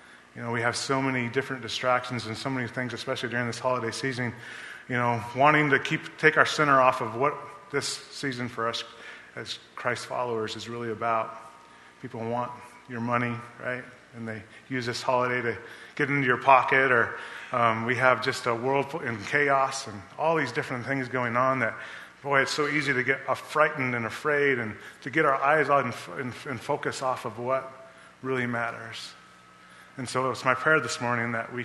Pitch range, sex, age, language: 120-140 Hz, male, 30-49, English